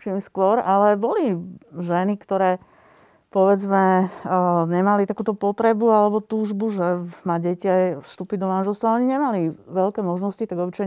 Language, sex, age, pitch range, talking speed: Slovak, female, 50-69, 180-215 Hz, 135 wpm